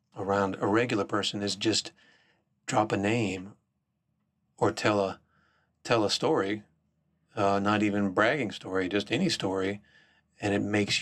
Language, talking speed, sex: English, 140 wpm, male